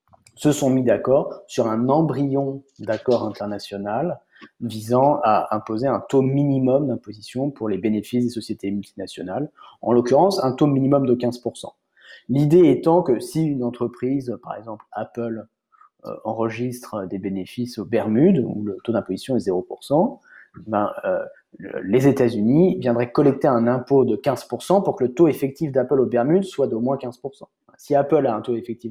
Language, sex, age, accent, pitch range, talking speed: French, male, 20-39, French, 115-160 Hz, 160 wpm